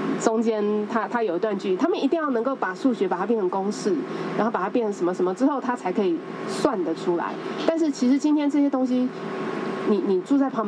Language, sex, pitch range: Chinese, female, 195-285 Hz